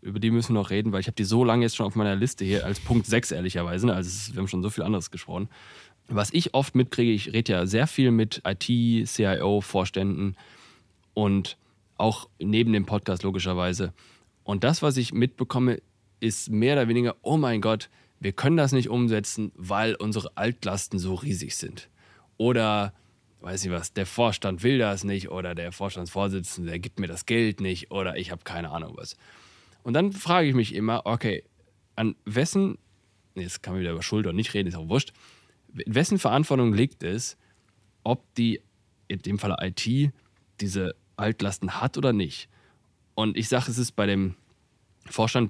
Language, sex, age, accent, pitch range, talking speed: German, male, 20-39, German, 95-125 Hz, 185 wpm